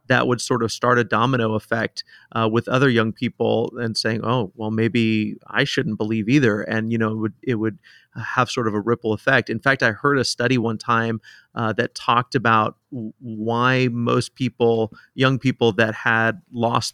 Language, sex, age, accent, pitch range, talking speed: English, male, 30-49, American, 110-125 Hz, 195 wpm